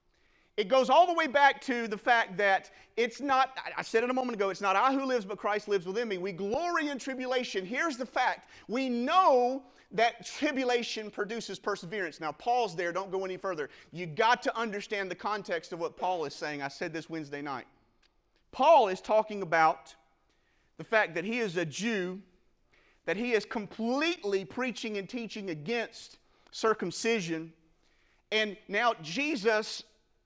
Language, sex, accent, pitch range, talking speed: English, male, American, 190-250 Hz, 175 wpm